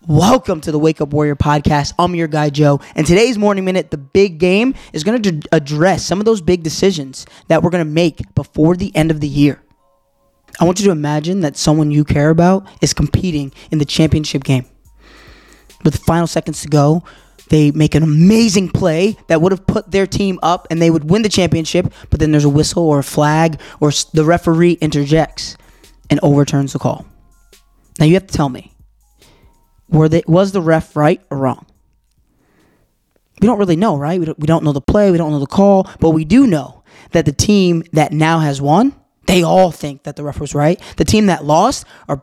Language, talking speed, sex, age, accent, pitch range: English, 210 wpm, male, 20-39, American, 150-185 Hz